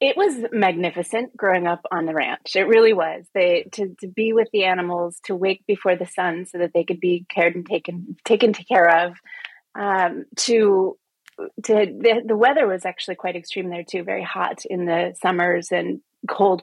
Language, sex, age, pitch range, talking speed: English, female, 30-49, 175-205 Hz, 195 wpm